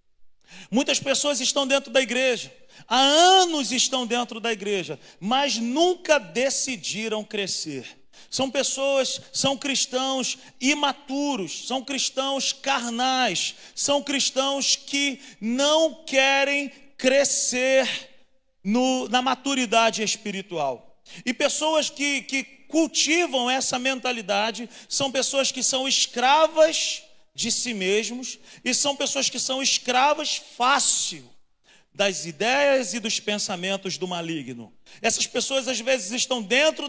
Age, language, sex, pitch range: 40-59, Portuguese, male, 230-275 Hz